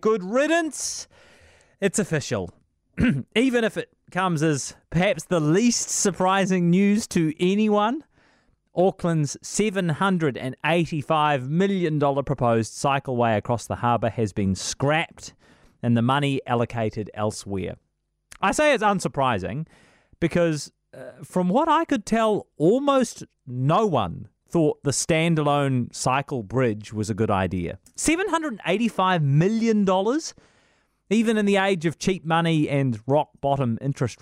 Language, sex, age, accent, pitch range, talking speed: English, male, 30-49, Australian, 115-185 Hz, 120 wpm